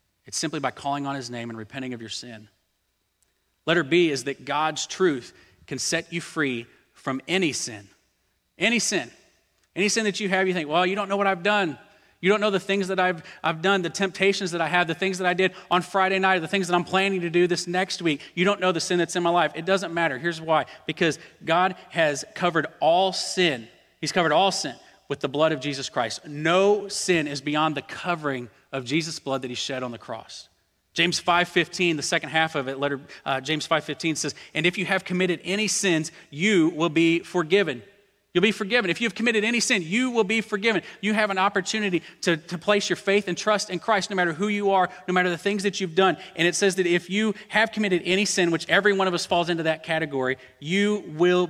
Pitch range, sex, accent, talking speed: 150-190 Hz, male, American, 235 wpm